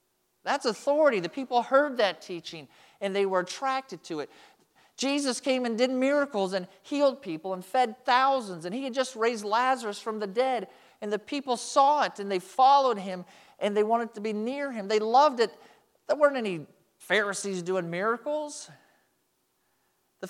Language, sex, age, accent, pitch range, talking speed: English, male, 40-59, American, 165-240 Hz, 175 wpm